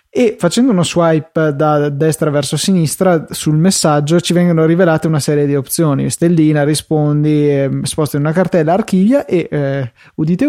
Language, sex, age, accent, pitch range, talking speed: Italian, male, 20-39, native, 150-180 Hz, 160 wpm